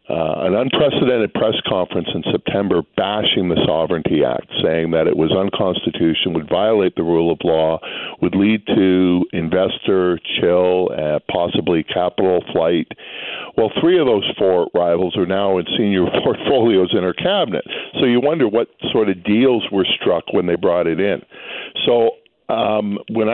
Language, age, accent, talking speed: English, 50-69, American, 160 wpm